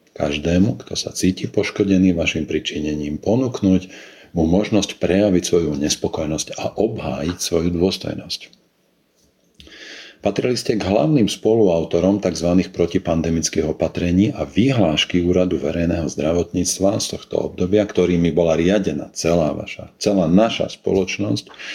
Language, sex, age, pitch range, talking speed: Slovak, male, 50-69, 80-100 Hz, 115 wpm